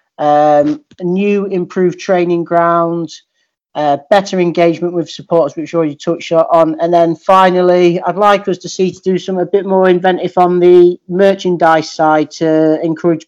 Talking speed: 165 wpm